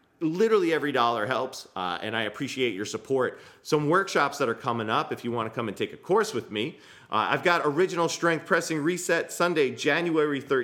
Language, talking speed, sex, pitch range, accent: English, 205 wpm, male, 115-155 Hz, American